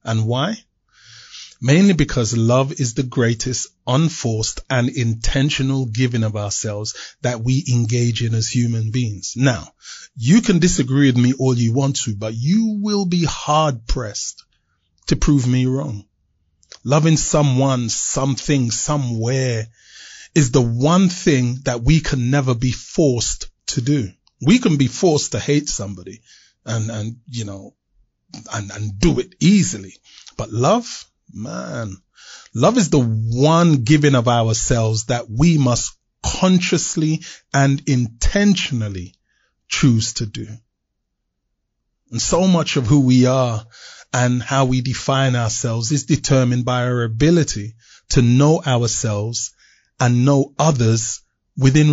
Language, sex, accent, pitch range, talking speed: English, male, Nigerian, 115-150 Hz, 135 wpm